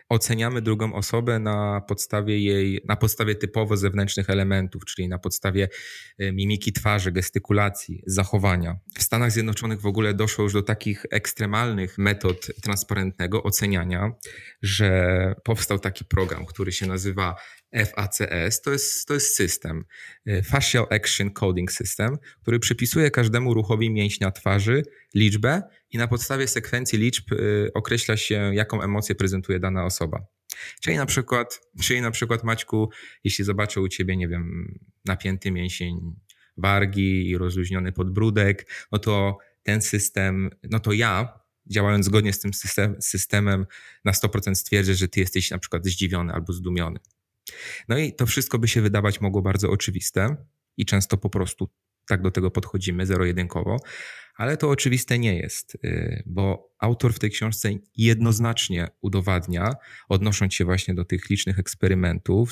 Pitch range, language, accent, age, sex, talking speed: 95-110 Hz, Polish, native, 20-39, male, 140 wpm